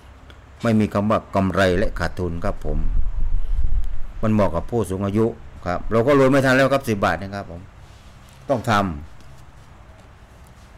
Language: Thai